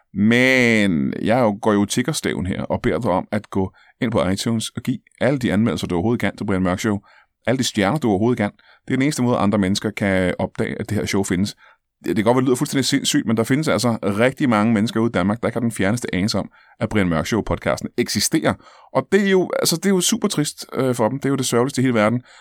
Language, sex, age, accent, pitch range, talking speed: Danish, male, 30-49, native, 100-125 Hz, 250 wpm